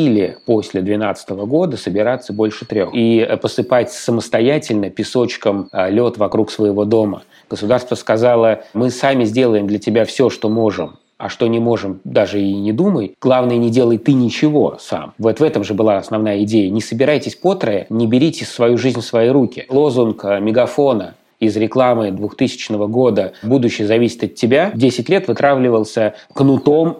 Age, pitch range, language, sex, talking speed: 30-49, 110-135 Hz, Russian, male, 155 wpm